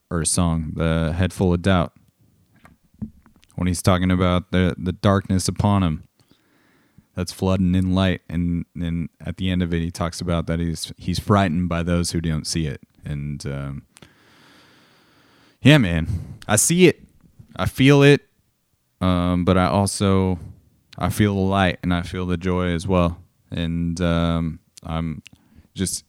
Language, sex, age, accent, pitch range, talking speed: English, male, 30-49, American, 85-105 Hz, 160 wpm